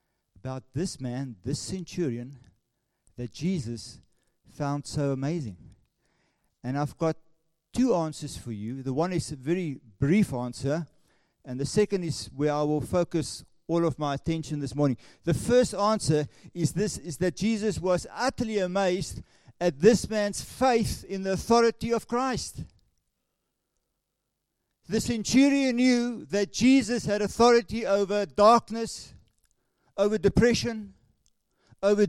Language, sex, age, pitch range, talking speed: English, male, 50-69, 140-220 Hz, 135 wpm